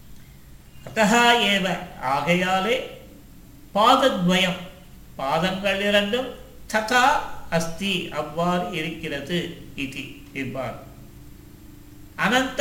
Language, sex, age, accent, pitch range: Tamil, male, 50-69, native, 160-220 Hz